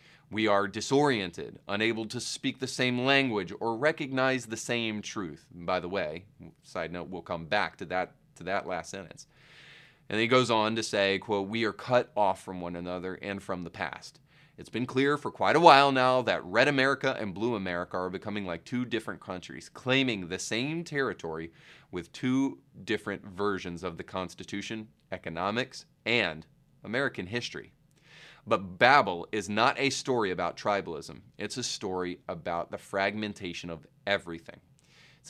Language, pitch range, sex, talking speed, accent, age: English, 100-130 Hz, male, 170 wpm, American, 30-49